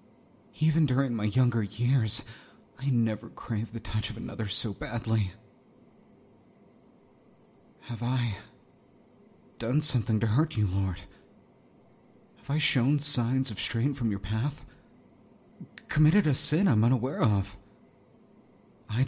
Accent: American